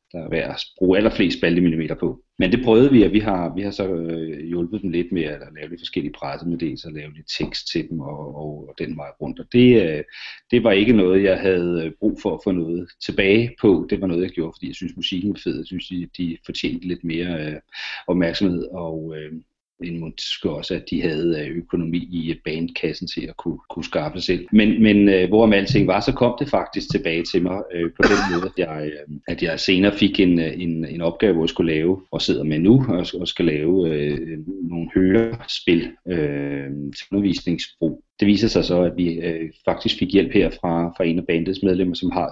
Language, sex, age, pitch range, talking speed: Danish, male, 40-59, 80-95 Hz, 220 wpm